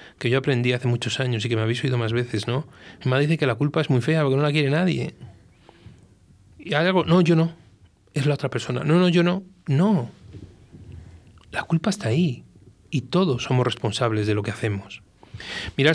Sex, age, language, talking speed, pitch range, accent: male, 30-49, Spanish, 205 wpm, 110-150 Hz, Spanish